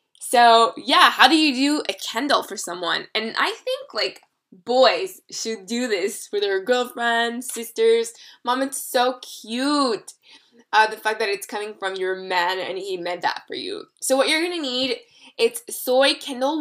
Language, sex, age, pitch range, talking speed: English, female, 10-29, 220-285 Hz, 180 wpm